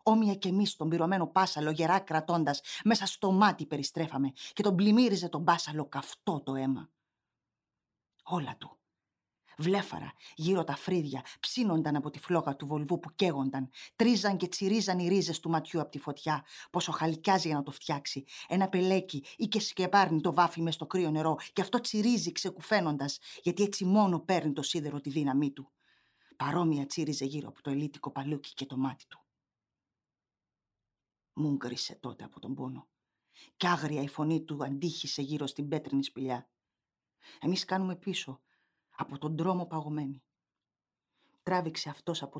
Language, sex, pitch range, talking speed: Greek, female, 140-180 Hz, 155 wpm